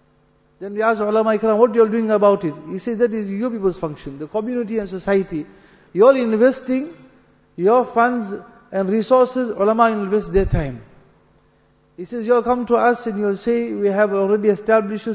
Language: English